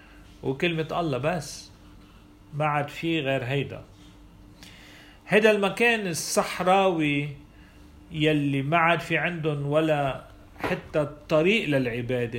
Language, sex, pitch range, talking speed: Arabic, male, 100-155 Hz, 95 wpm